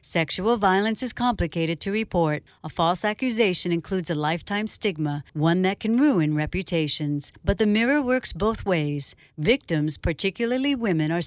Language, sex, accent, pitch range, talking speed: English, female, American, 170-235 Hz, 150 wpm